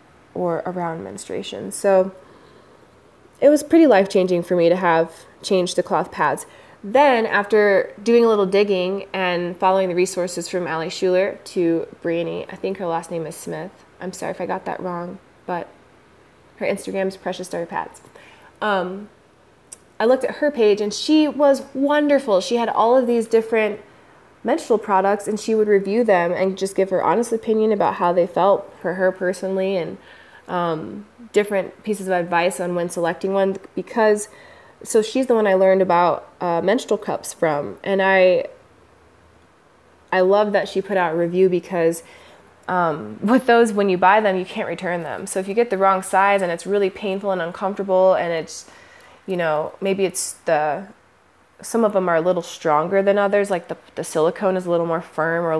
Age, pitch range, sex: 20-39, 175-210 Hz, female